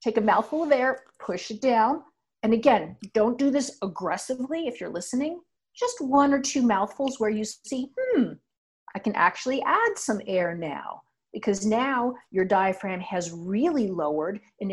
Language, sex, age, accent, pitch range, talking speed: English, female, 50-69, American, 200-275 Hz, 165 wpm